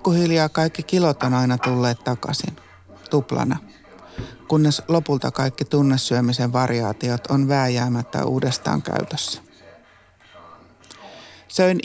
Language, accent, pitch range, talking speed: Finnish, native, 125-155 Hz, 90 wpm